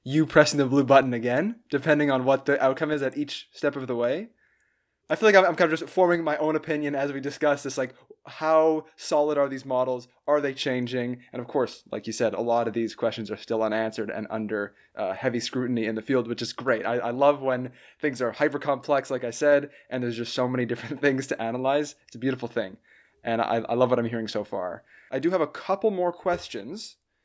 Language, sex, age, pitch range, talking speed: English, male, 20-39, 125-160 Hz, 235 wpm